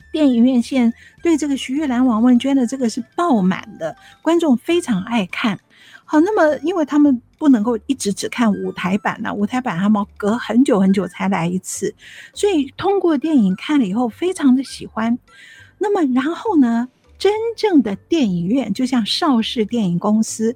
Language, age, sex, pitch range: Chinese, 50-69, female, 215-305 Hz